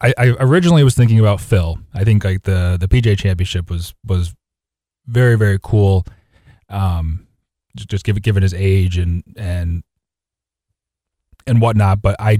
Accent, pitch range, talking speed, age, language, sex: American, 90-110 Hz, 160 wpm, 30-49, English, male